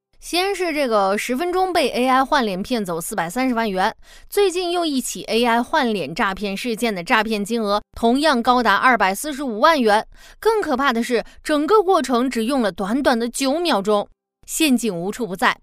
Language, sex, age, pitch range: Chinese, female, 20-39, 210-280 Hz